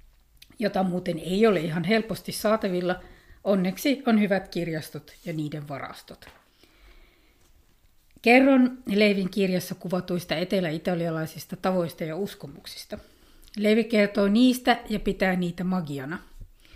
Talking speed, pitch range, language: 105 wpm, 170-215 Hz, Finnish